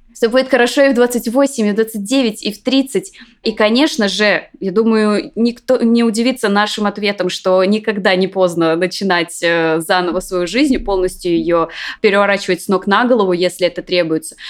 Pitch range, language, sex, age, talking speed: 180-230 Hz, Russian, female, 20-39, 165 wpm